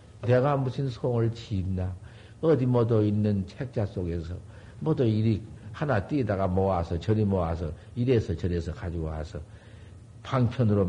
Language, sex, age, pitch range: Korean, male, 50-69, 95-115 Hz